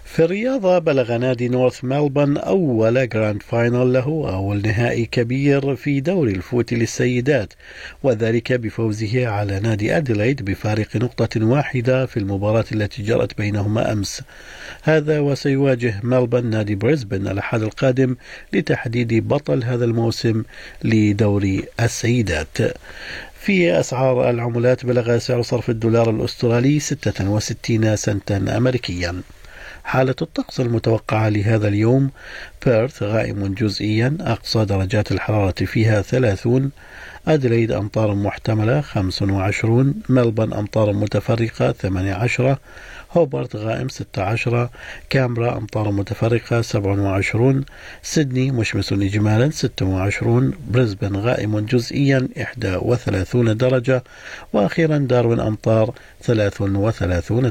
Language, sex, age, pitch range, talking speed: Arabic, male, 50-69, 105-125 Hz, 100 wpm